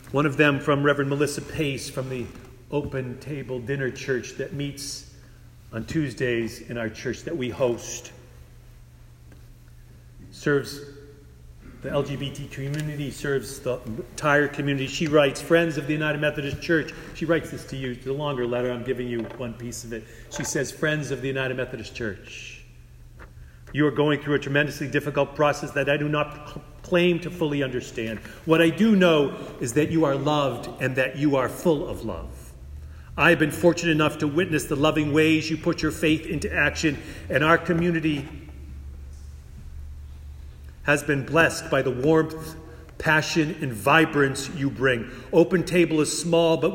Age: 40-59